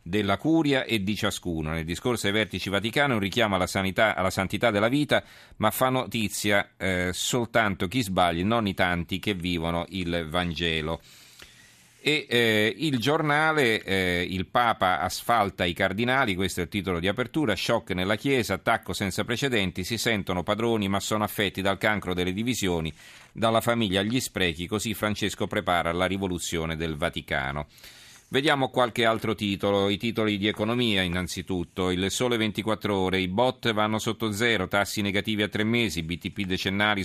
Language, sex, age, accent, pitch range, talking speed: Italian, male, 40-59, native, 90-110 Hz, 160 wpm